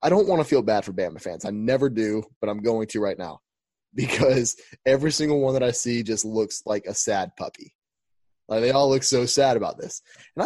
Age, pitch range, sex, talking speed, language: 20-39, 105-125 Hz, male, 230 wpm, English